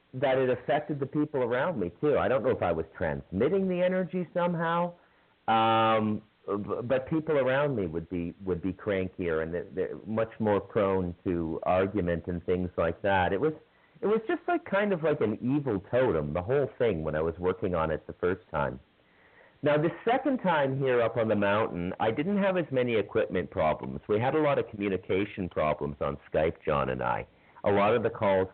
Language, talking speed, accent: English, 200 wpm, American